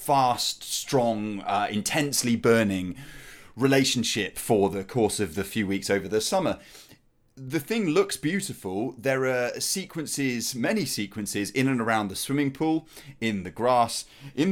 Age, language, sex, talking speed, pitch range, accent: 30-49, English, male, 145 wpm, 110-150 Hz, British